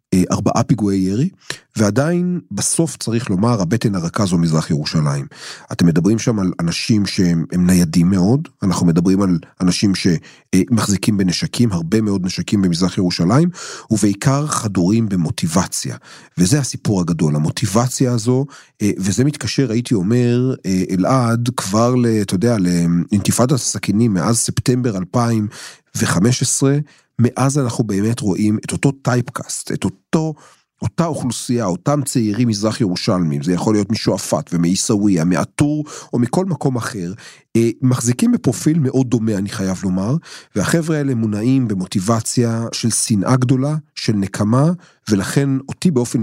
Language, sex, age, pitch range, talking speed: Hebrew, male, 40-59, 95-130 Hz, 125 wpm